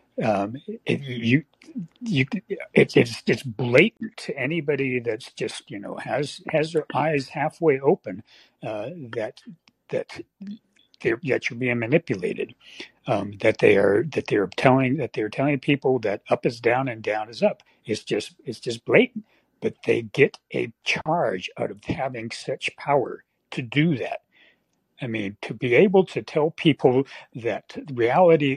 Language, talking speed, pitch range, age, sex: English, 155 wpm, 125-175 Hz, 60-79, male